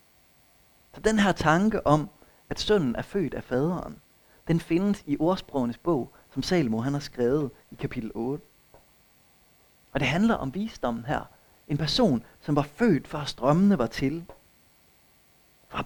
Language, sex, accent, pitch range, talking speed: Danish, male, native, 135-185 Hz, 150 wpm